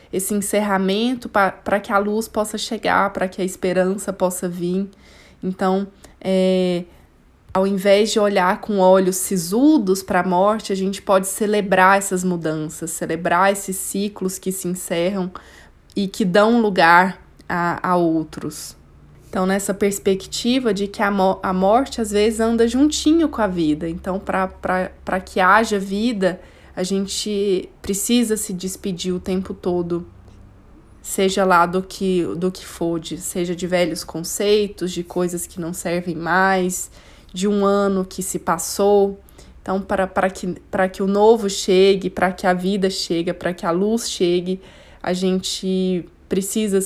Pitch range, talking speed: 180-200 Hz, 145 wpm